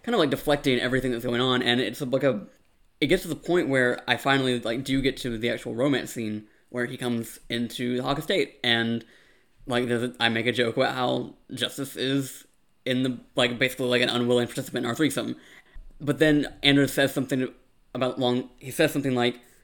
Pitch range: 120-135 Hz